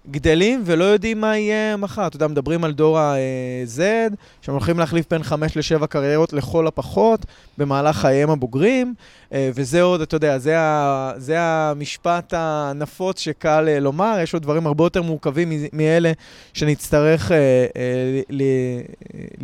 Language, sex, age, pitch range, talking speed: Hebrew, male, 20-39, 145-175 Hz, 150 wpm